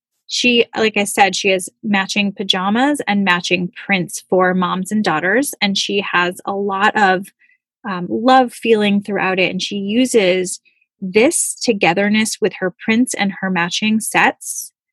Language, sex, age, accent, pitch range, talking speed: English, female, 10-29, American, 190-235 Hz, 155 wpm